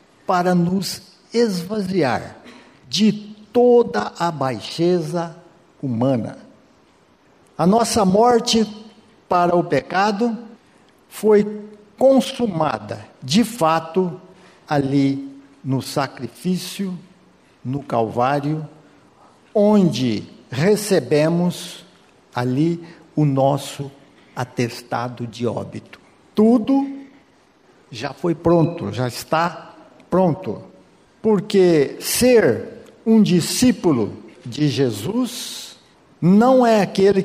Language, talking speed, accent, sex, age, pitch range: Portuguese, 75 wpm, Brazilian, male, 60-79, 135-190 Hz